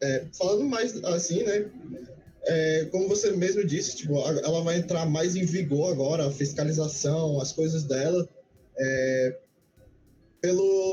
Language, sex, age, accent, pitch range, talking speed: Portuguese, male, 20-39, Brazilian, 155-195 Hz, 135 wpm